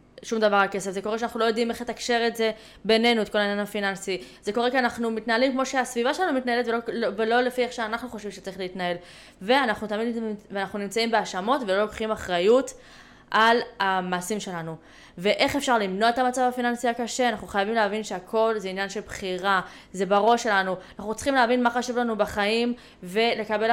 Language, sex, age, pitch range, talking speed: Hebrew, female, 20-39, 195-235 Hz, 180 wpm